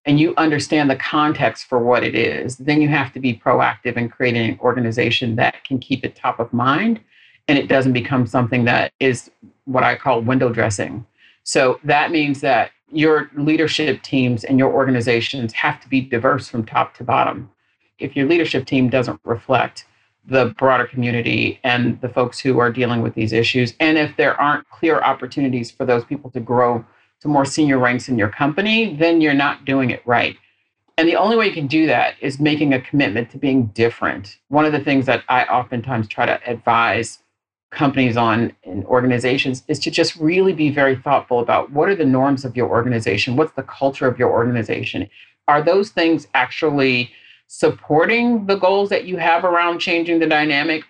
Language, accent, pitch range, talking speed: English, American, 120-155 Hz, 190 wpm